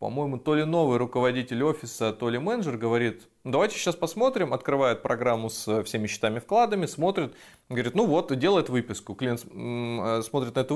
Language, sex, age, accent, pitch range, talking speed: Russian, male, 20-39, native, 110-155 Hz, 160 wpm